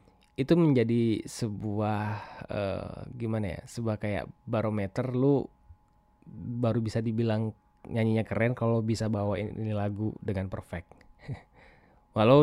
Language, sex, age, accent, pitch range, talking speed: Indonesian, male, 20-39, native, 105-120 Hz, 110 wpm